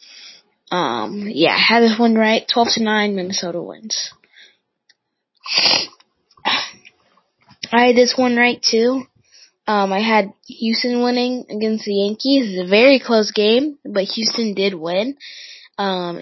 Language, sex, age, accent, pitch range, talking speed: English, female, 10-29, American, 190-240 Hz, 135 wpm